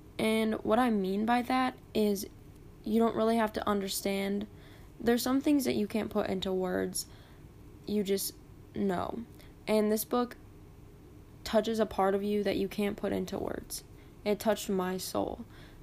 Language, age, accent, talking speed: English, 10-29, American, 165 wpm